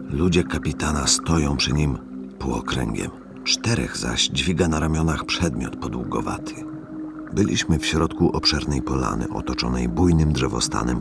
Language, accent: Polish, native